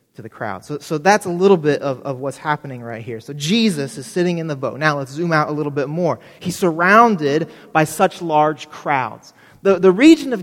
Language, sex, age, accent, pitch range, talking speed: English, male, 30-49, American, 150-200 Hz, 230 wpm